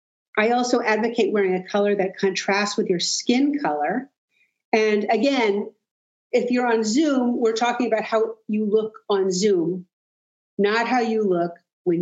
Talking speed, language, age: 155 wpm, English, 50-69